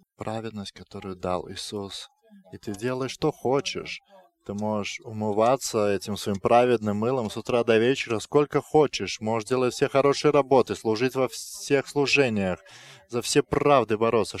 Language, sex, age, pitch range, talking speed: English, male, 20-39, 105-130 Hz, 145 wpm